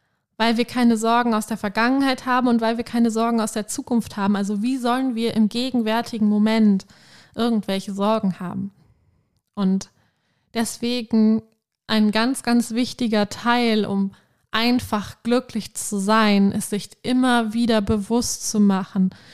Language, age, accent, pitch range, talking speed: German, 20-39, German, 205-235 Hz, 145 wpm